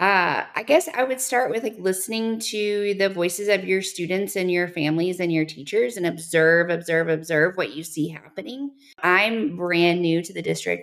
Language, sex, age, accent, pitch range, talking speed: English, female, 20-39, American, 155-190 Hz, 195 wpm